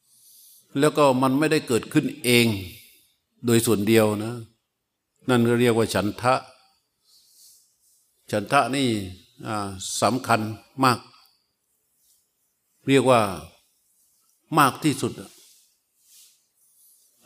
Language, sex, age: Thai, male, 60-79